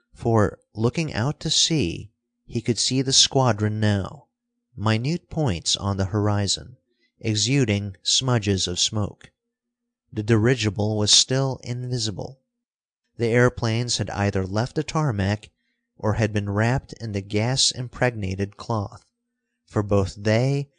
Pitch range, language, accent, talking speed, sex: 105-130 Hz, English, American, 125 wpm, male